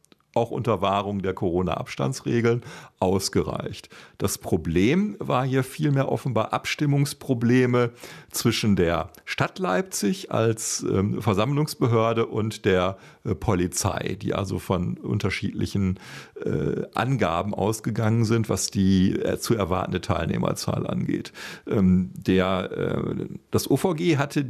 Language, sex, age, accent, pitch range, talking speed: German, male, 50-69, German, 100-135 Hz, 110 wpm